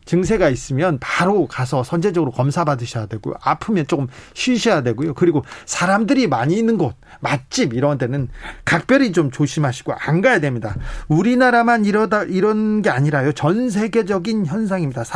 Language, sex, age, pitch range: Korean, male, 40-59, 135-195 Hz